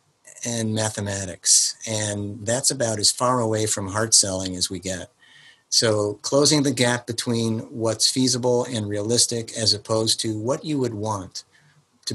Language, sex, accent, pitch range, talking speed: English, male, American, 105-120 Hz, 155 wpm